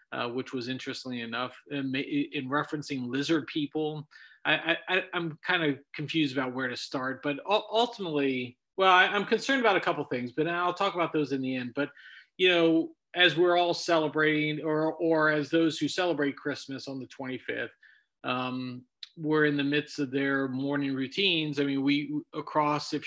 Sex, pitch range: male, 135-155 Hz